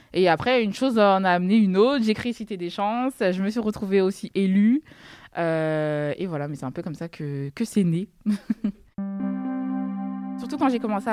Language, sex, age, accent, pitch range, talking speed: French, female, 20-39, French, 160-210 Hz, 200 wpm